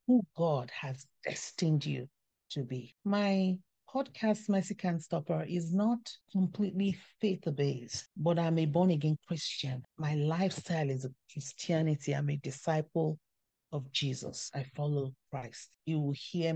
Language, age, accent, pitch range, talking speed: English, 40-59, Nigerian, 140-170 Hz, 130 wpm